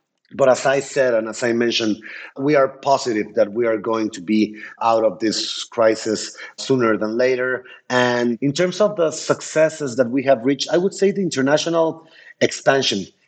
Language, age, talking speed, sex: English, 30-49, 180 wpm, male